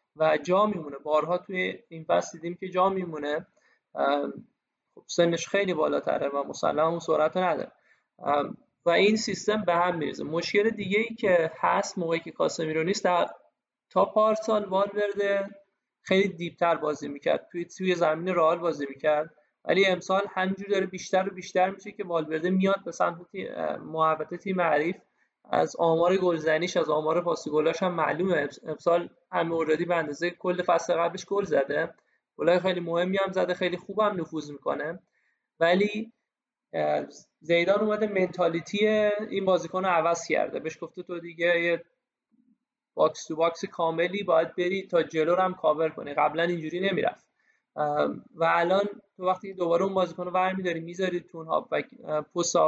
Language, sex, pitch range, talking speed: Persian, male, 165-195 Hz, 140 wpm